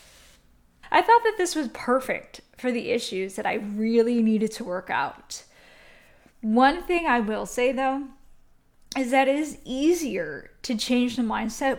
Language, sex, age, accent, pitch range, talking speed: English, female, 10-29, American, 225-275 Hz, 160 wpm